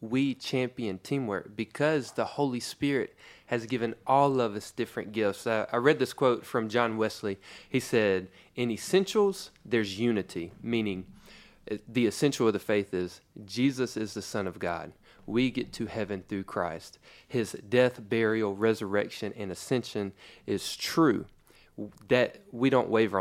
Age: 30-49